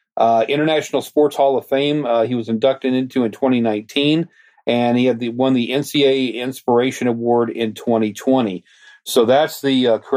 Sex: male